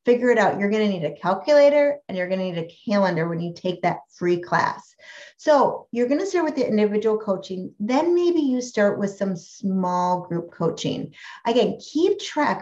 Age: 30-49